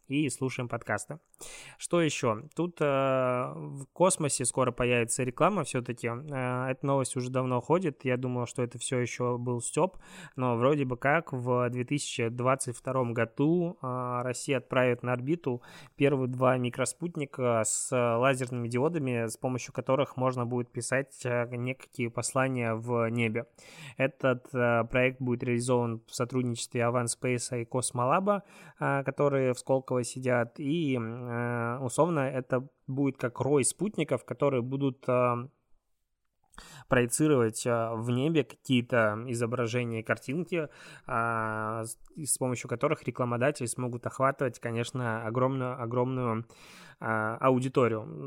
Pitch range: 120-135 Hz